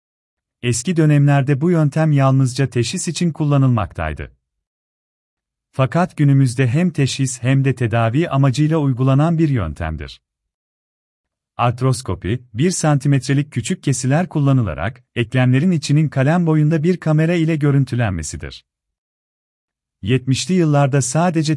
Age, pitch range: 40-59, 95-150 Hz